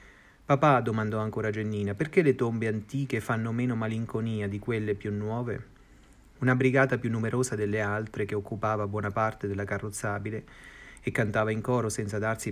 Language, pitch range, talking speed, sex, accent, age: Italian, 105-125 Hz, 160 wpm, male, native, 30-49